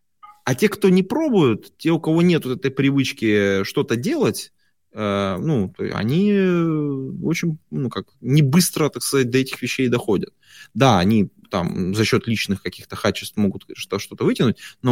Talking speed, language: 160 wpm, Russian